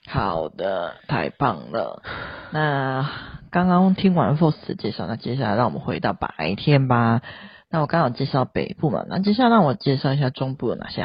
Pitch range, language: 135-175 Hz, Chinese